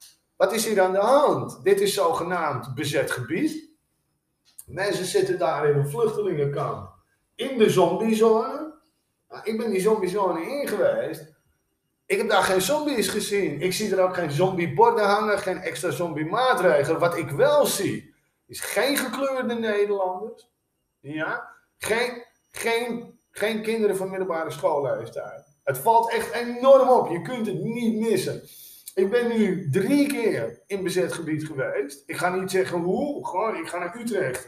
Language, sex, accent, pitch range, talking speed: English, male, Dutch, 175-235 Hz, 155 wpm